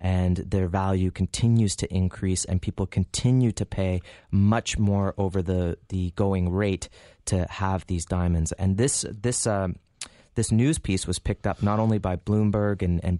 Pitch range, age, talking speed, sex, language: 90-105 Hz, 30-49, 175 wpm, male, English